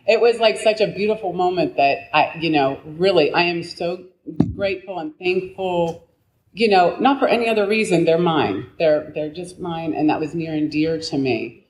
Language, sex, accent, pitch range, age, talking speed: English, female, American, 145-180 Hz, 30-49, 200 wpm